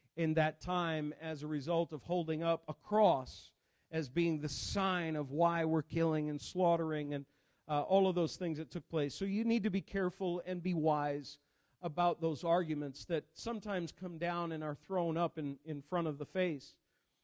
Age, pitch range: 50-69, 165-200 Hz